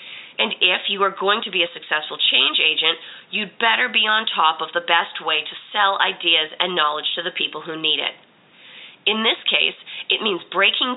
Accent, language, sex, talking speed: American, English, female, 200 wpm